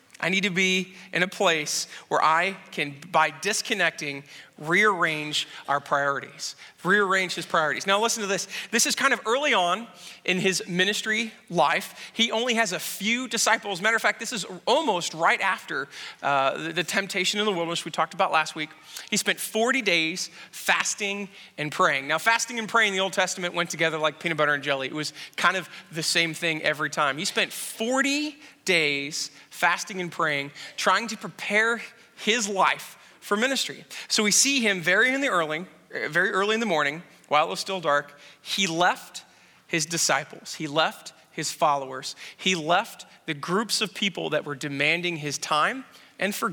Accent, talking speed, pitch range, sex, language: American, 185 wpm, 155-210 Hz, male, English